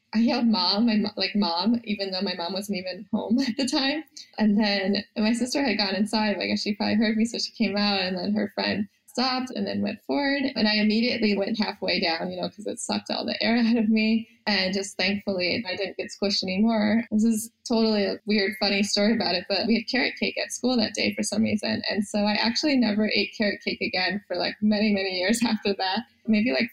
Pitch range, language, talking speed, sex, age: 200-230 Hz, English, 240 wpm, female, 20-39